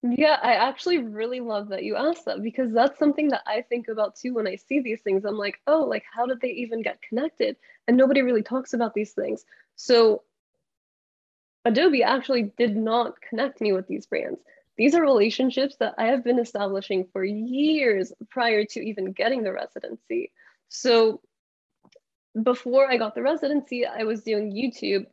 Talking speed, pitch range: 180 wpm, 200-265 Hz